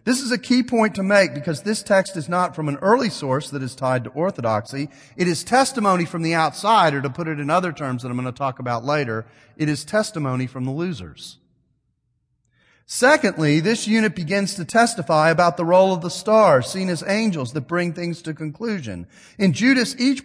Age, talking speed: 40-59, 205 wpm